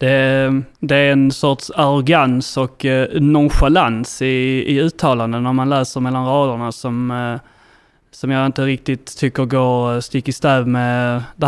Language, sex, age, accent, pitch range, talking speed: Swedish, male, 20-39, native, 130-145 Hz, 145 wpm